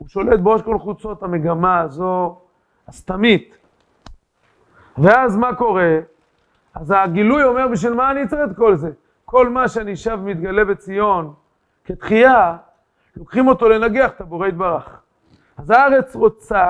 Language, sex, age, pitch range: Hebrew, male, 40-59, 200-260 Hz